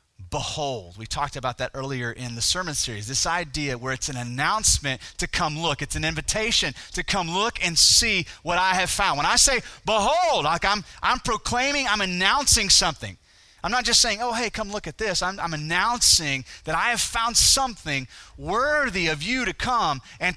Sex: male